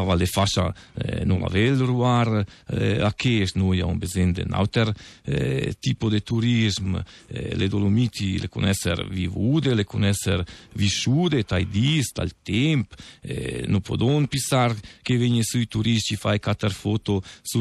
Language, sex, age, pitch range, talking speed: Italian, male, 50-69, 95-115 Hz, 155 wpm